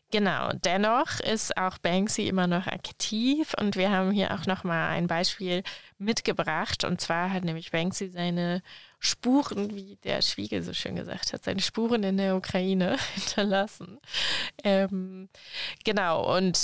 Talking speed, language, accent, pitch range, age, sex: 145 wpm, German, German, 170-195 Hz, 20-39, female